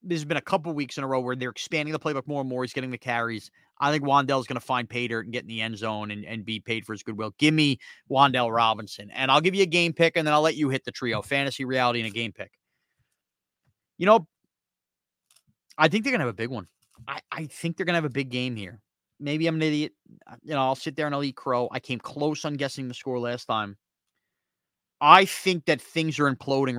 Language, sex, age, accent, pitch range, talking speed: English, male, 30-49, American, 120-165 Hz, 260 wpm